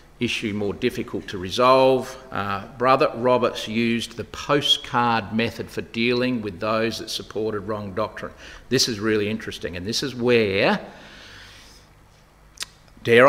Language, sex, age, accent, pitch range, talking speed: English, male, 40-59, Australian, 110-145 Hz, 130 wpm